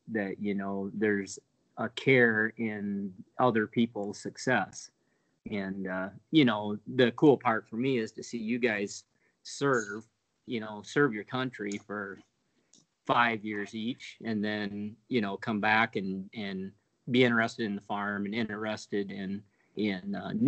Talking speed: 150 wpm